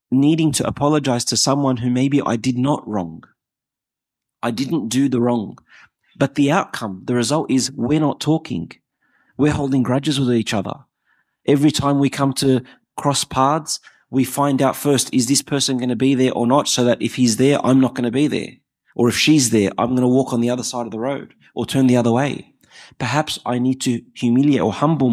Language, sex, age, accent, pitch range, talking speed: English, male, 30-49, Australian, 110-135 Hz, 215 wpm